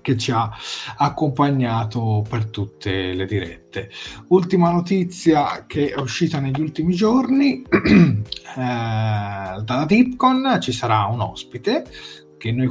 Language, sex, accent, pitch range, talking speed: Italian, male, native, 95-130 Hz, 120 wpm